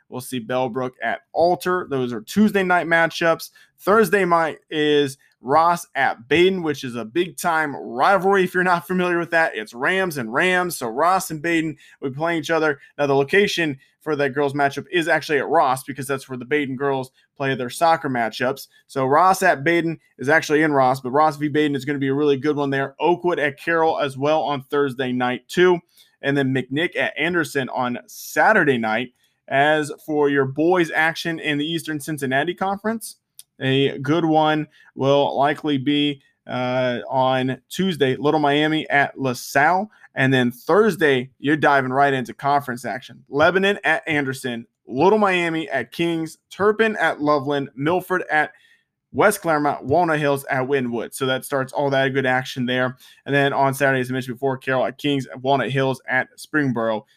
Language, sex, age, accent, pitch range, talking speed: English, male, 20-39, American, 135-165 Hz, 180 wpm